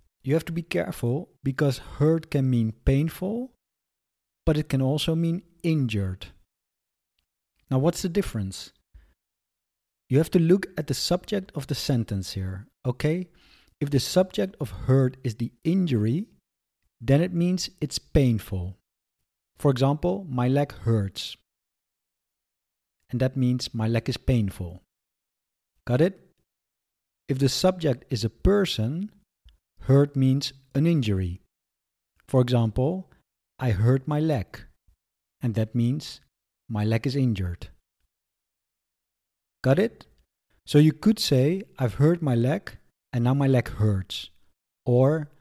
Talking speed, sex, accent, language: 130 wpm, male, Dutch, English